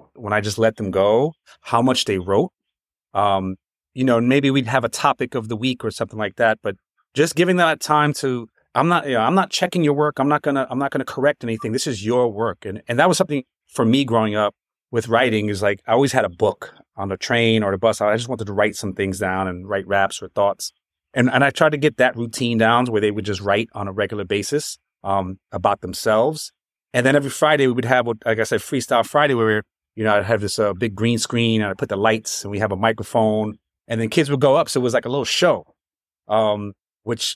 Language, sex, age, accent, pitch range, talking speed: English, male, 30-49, American, 105-135 Hz, 260 wpm